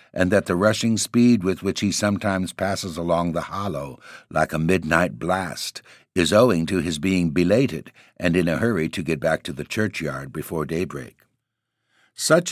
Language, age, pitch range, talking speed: English, 60-79, 80-105 Hz, 175 wpm